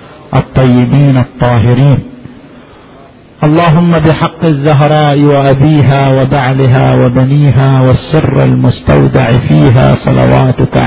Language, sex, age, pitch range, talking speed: Arabic, male, 50-69, 125-150 Hz, 65 wpm